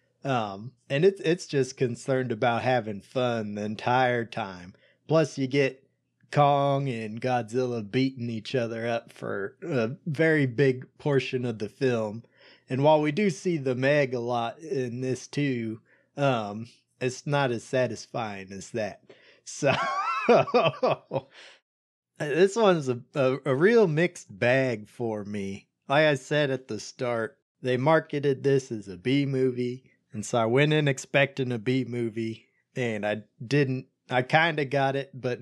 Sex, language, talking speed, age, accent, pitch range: male, English, 150 wpm, 30-49, American, 115-140 Hz